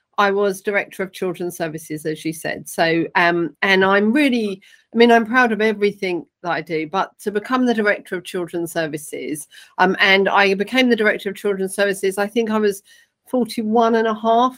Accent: British